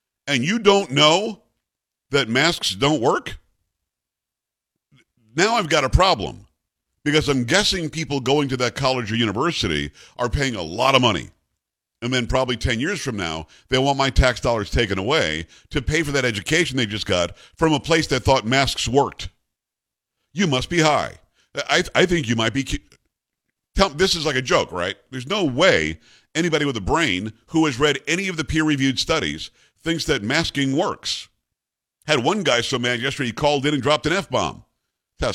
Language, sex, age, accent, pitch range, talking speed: English, male, 50-69, American, 115-155 Hz, 180 wpm